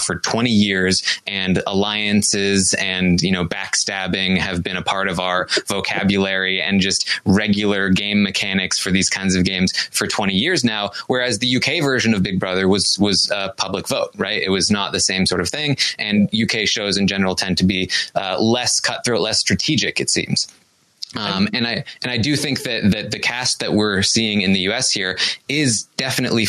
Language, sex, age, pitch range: English, male, 20-39, 95-115 Hz